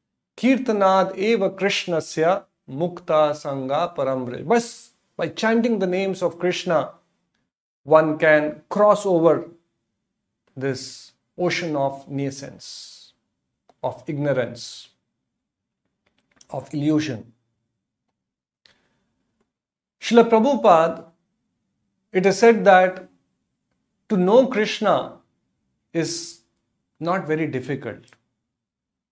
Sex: male